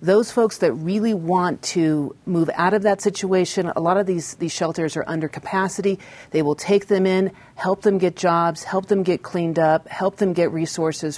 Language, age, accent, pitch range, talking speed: English, 40-59, American, 150-185 Hz, 205 wpm